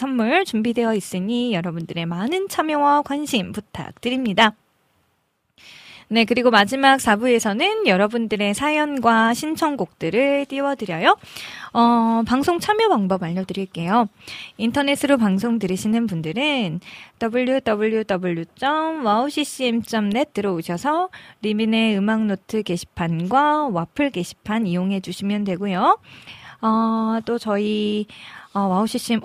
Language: Korean